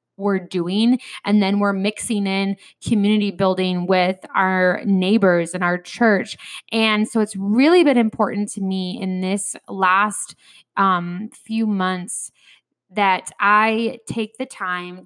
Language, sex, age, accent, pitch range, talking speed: English, female, 20-39, American, 180-215 Hz, 135 wpm